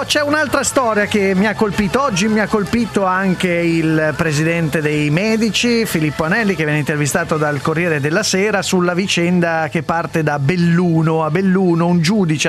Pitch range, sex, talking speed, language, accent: 145-215 Hz, male, 170 wpm, Italian, native